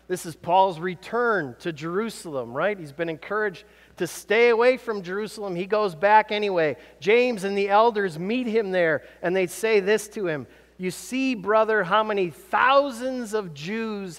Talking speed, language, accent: 170 wpm, English, American